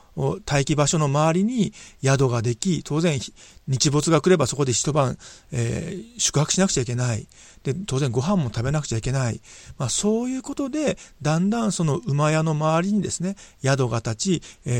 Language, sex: Japanese, male